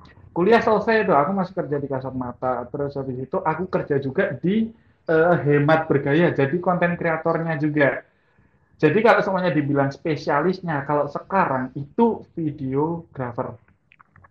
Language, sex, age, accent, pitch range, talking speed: Indonesian, male, 20-39, native, 130-160 Hz, 135 wpm